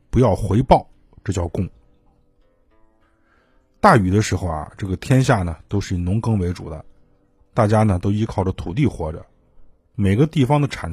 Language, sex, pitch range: Chinese, male, 85-135 Hz